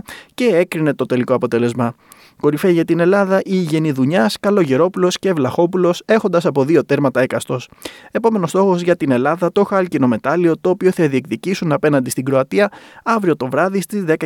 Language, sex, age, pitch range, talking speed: Greek, male, 20-39, 130-190 Hz, 160 wpm